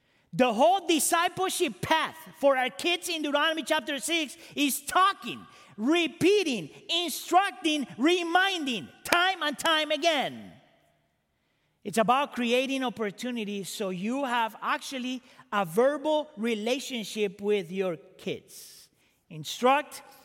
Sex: male